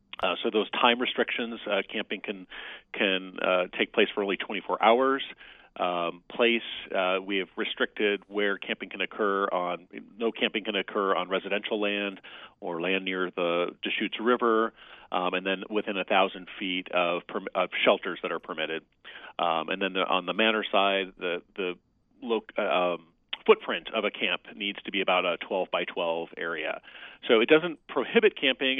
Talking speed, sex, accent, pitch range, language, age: 175 wpm, male, American, 95-115 Hz, English, 40-59